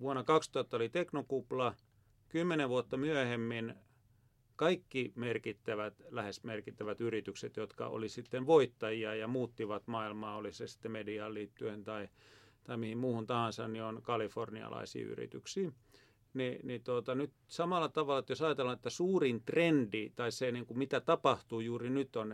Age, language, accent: 40-59, Finnish, native